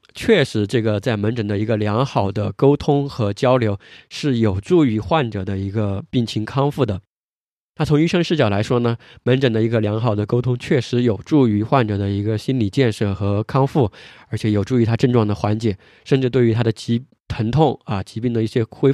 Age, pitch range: 20-39, 110-135 Hz